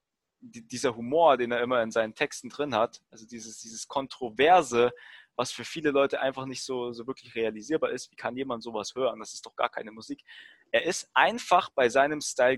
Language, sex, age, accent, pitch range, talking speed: German, male, 20-39, German, 115-150 Hz, 200 wpm